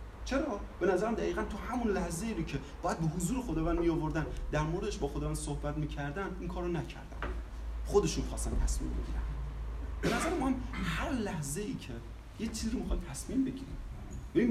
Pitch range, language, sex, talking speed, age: 140-195 Hz, Persian, male, 180 wpm, 30-49